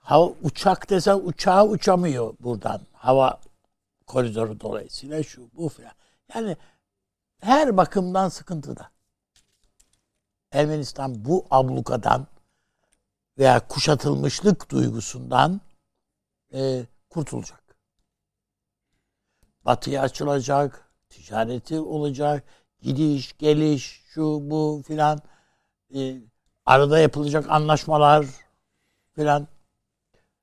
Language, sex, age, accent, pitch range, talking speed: Turkish, male, 60-79, native, 125-160 Hz, 75 wpm